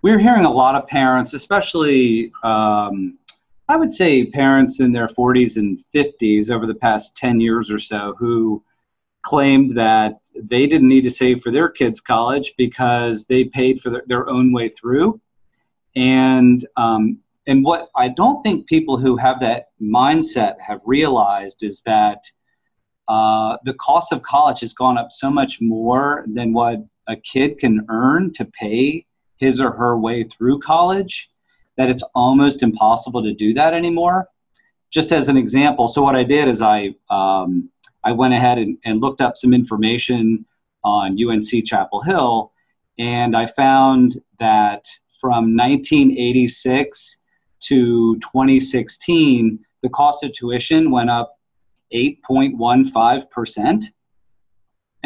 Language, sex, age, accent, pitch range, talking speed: English, male, 40-59, American, 115-135 Hz, 145 wpm